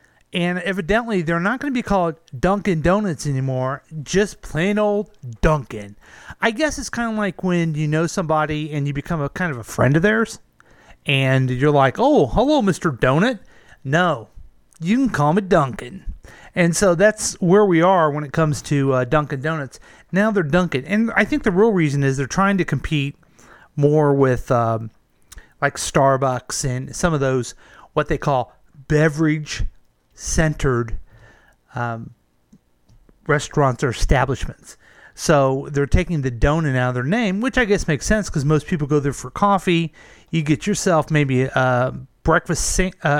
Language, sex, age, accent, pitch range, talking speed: English, male, 40-59, American, 135-185 Hz, 165 wpm